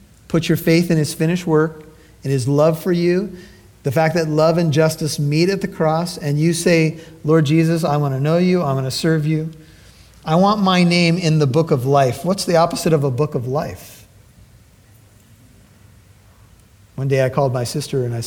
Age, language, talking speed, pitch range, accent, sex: 40-59, English, 205 wpm, 110-165 Hz, American, male